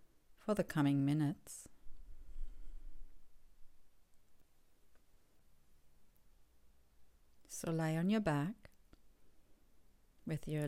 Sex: female